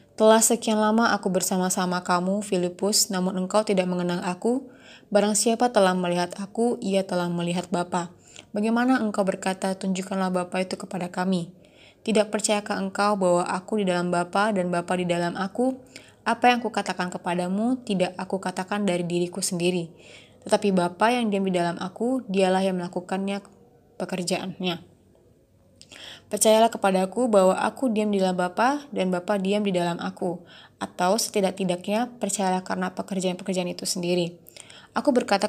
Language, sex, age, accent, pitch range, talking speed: Indonesian, female, 20-39, native, 185-210 Hz, 145 wpm